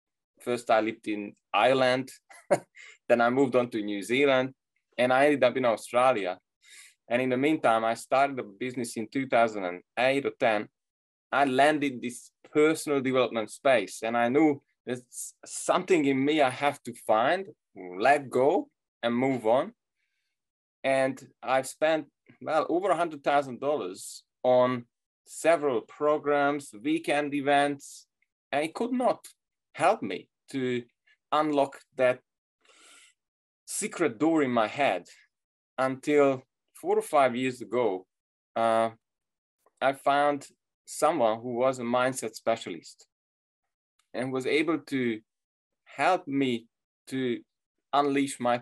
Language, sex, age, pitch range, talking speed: English, male, 20-39, 120-145 Hz, 125 wpm